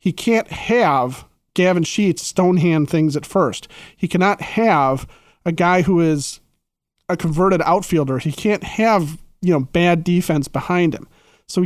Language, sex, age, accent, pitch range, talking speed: English, male, 40-59, American, 160-190 Hz, 150 wpm